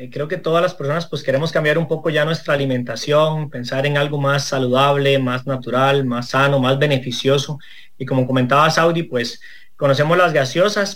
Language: English